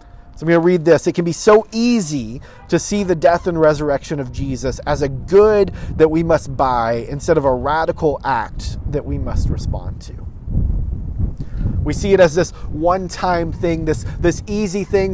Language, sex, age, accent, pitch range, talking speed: English, male, 30-49, American, 120-170 Hz, 185 wpm